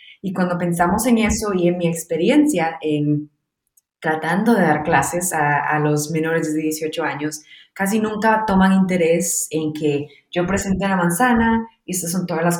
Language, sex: Spanish, female